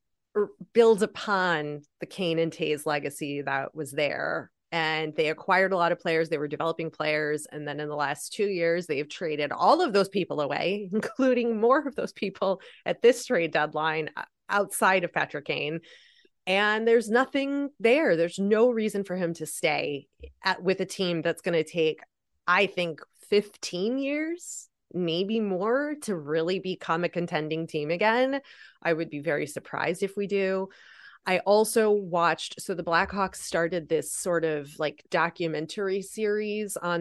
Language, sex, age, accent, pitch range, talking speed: English, female, 30-49, American, 155-195 Hz, 165 wpm